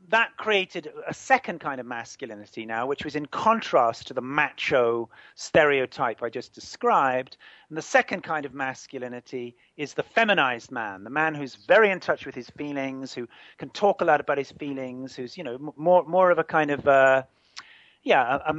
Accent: British